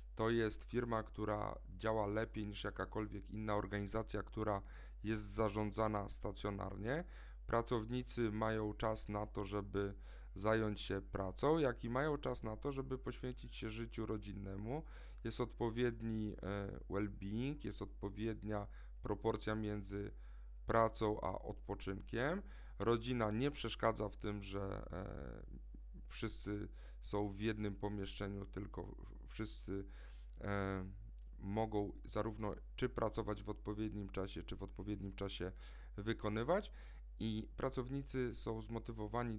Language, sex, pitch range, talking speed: Polish, male, 100-115 Hz, 115 wpm